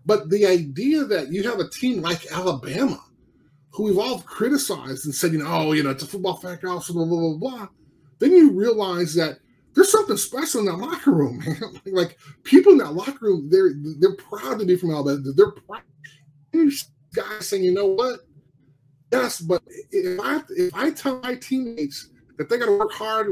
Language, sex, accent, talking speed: English, male, American, 195 wpm